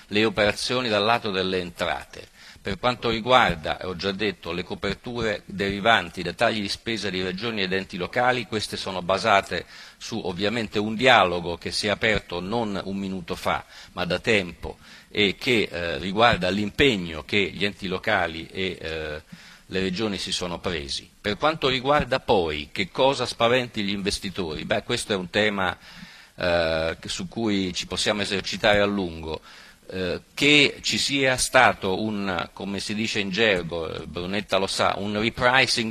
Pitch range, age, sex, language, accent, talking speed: 95-110 Hz, 50-69, male, Italian, native, 160 wpm